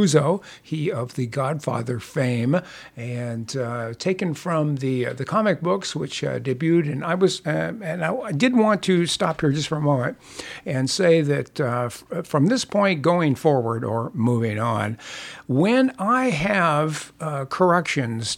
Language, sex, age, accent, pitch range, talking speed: English, male, 60-79, American, 125-160 Hz, 165 wpm